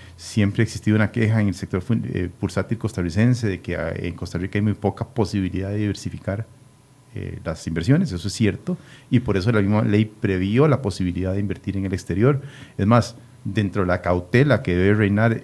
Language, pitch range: Spanish, 95-120 Hz